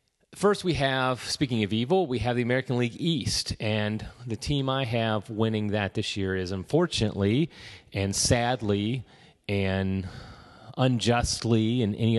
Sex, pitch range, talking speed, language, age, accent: male, 95-115 Hz, 145 wpm, English, 30-49, American